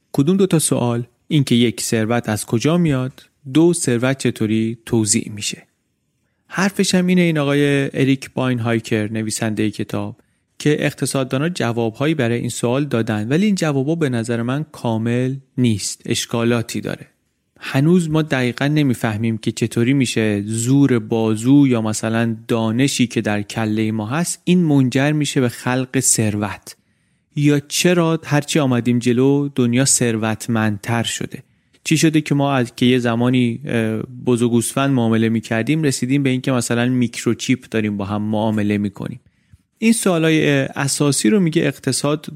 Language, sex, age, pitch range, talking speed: Persian, male, 30-49, 115-145 Hz, 140 wpm